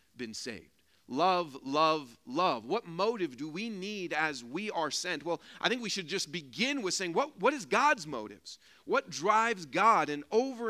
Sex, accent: male, American